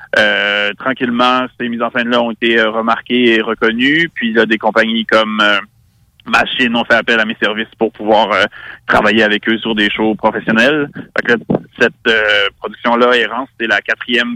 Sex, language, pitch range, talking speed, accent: male, French, 110-120 Hz, 190 wpm, French